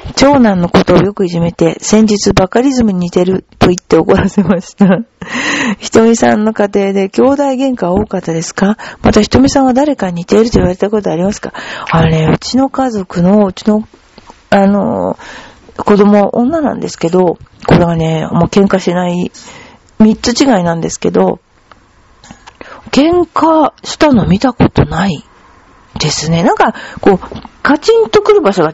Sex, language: female, Japanese